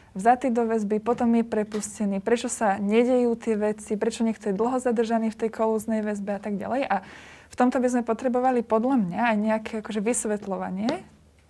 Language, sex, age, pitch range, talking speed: Slovak, female, 20-39, 215-245 Hz, 185 wpm